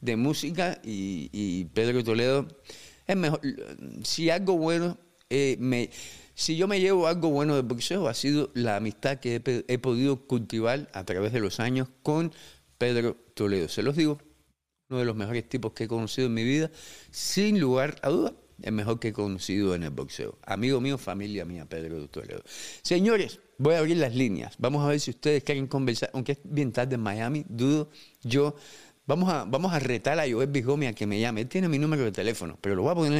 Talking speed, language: 205 wpm, Spanish